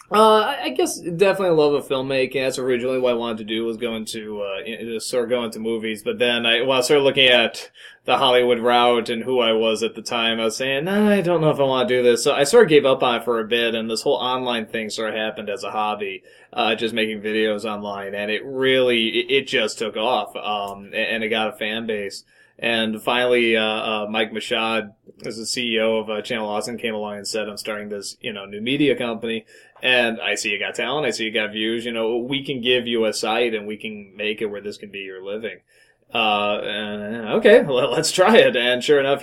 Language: English